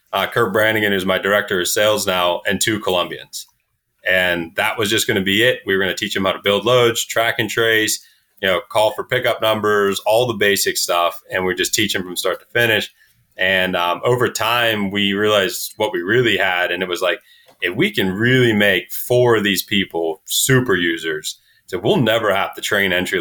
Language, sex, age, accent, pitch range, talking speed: English, male, 30-49, American, 95-120 Hz, 215 wpm